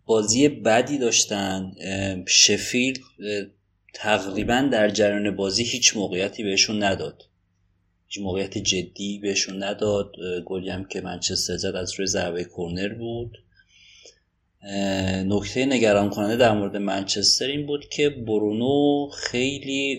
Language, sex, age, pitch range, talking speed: Persian, male, 30-49, 95-110 Hz, 110 wpm